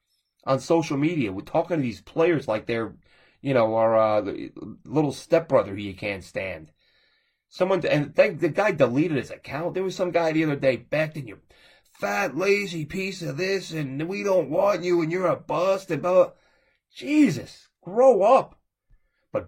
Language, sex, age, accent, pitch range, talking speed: English, male, 30-49, American, 130-175 Hz, 170 wpm